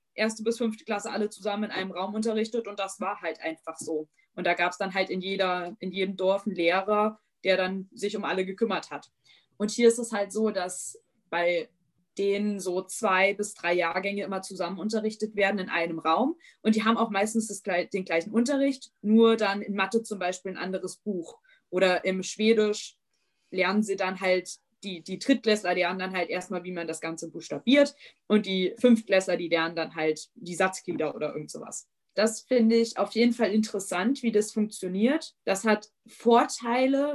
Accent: German